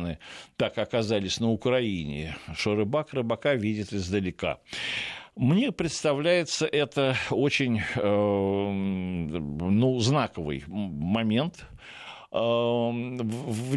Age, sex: 60-79, male